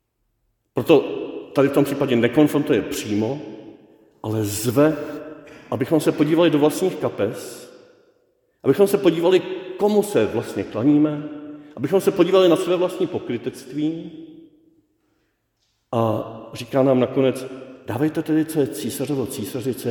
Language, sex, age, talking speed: Czech, male, 50-69, 120 wpm